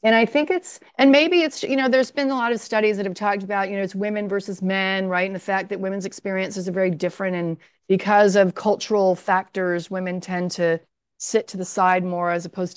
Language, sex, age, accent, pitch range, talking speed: English, female, 40-59, American, 175-210 Hz, 235 wpm